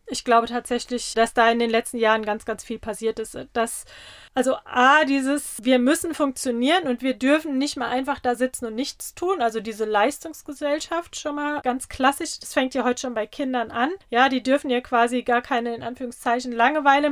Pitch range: 235-270 Hz